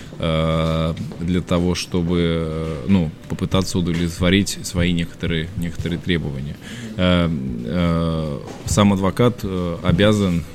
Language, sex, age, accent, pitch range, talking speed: Russian, male, 20-39, native, 85-95 Hz, 75 wpm